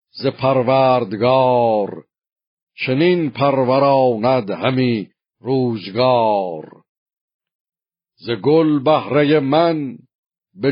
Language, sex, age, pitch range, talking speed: Persian, male, 50-69, 120-140 Hz, 60 wpm